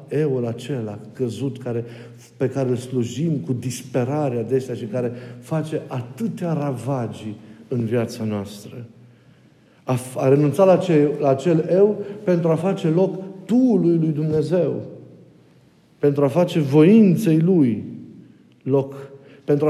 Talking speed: 125 wpm